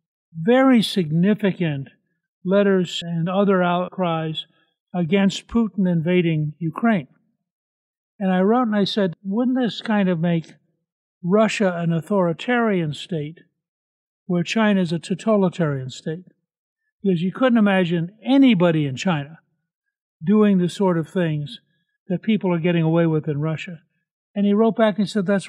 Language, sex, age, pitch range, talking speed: English, male, 60-79, 165-200 Hz, 135 wpm